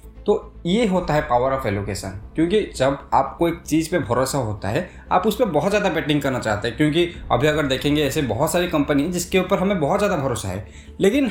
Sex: male